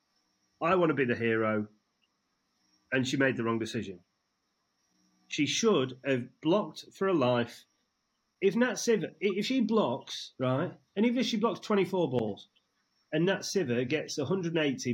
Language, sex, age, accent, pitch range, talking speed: English, male, 30-49, British, 120-170 Hz, 155 wpm